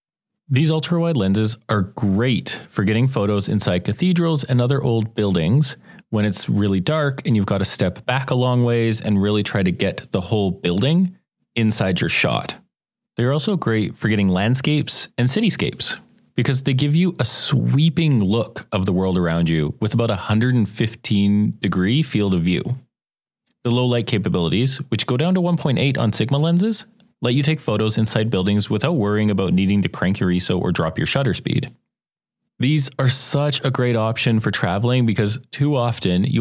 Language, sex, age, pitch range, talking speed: English, male, 30-49, 105-140 Hz, 180 wpm